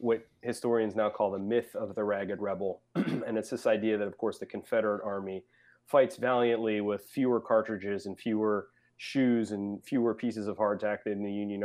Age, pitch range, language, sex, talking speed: 30-49, 100-115 Hz, English, male, 185 wpm